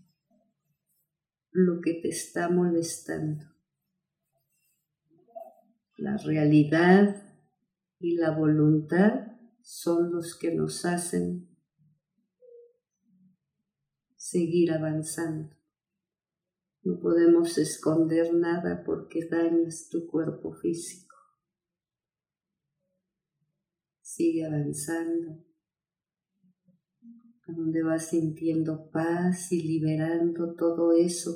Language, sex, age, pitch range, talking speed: Spanish, female, 40-59, 155-180 Hz, 70 wpm